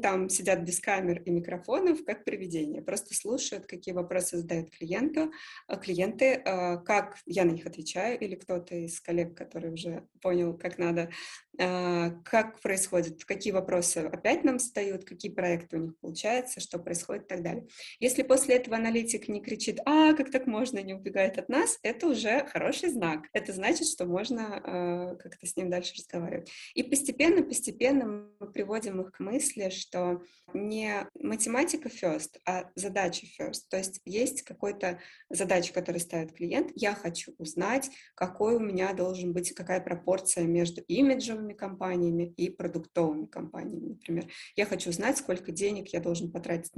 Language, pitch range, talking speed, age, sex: Russian, 175-225 Hz, 160 wpm, 20-39, female